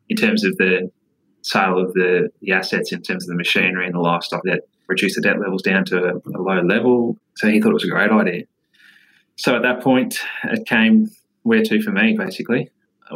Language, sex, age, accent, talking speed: English, male, 20-39, Australian, 220 wpm